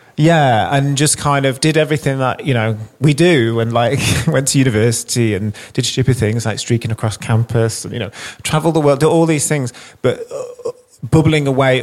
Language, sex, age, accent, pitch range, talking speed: English, male, 30-49, British, 110-130 Hz, 200 wpm